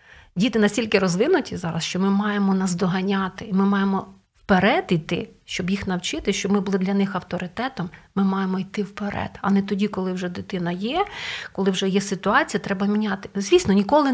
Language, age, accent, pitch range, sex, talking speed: Ukrainian, 40-59, native, 185-220 Hz, female, 175 wpm